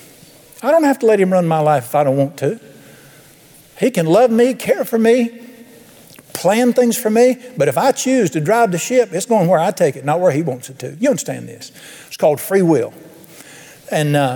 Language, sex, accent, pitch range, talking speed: English, male, American, 145-205 Hz, 225 wpm